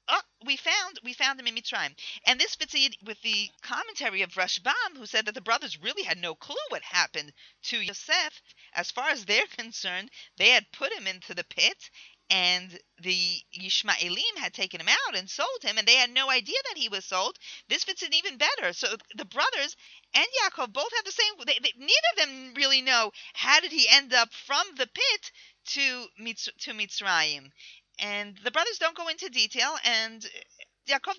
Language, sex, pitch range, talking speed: English, female, 205-300 Hz, 200 wpm